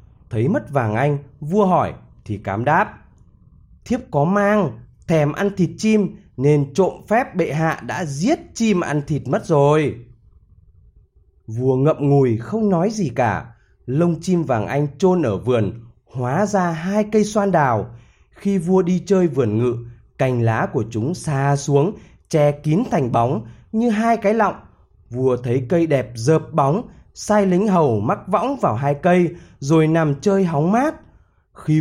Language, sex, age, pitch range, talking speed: Vietnamese, male, 20-39, 115-190 Hz, 165 wpm